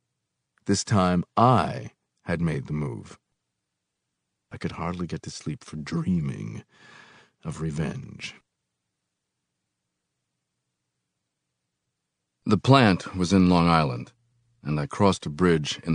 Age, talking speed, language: 50-69, 110 wpm, English